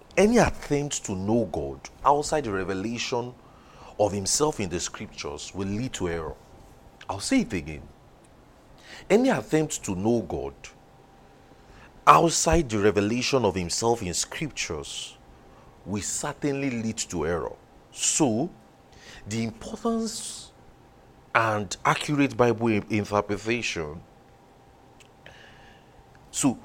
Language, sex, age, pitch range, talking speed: English, male, 40-59, 100-140 Hz, 105 wpm